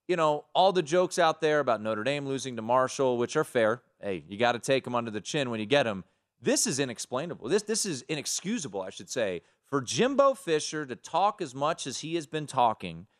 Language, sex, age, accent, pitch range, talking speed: English, male, 30-49, American, 135-190 Hz, 230 wpm